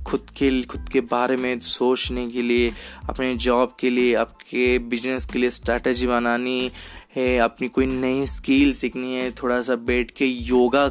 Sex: male